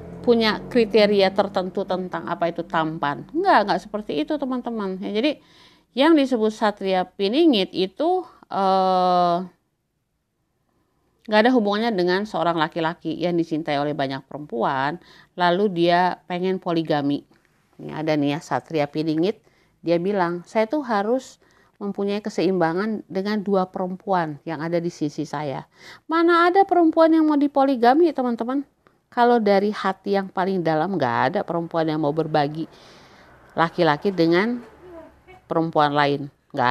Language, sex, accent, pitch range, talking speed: Indonesian, female, native, 160-215 Hz, 130 wpm